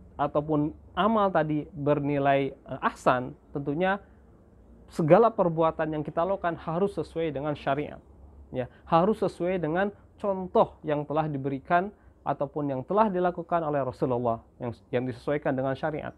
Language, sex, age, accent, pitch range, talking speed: Indonesian, male, 20-39, native, 135-170 Hz, 125 wpm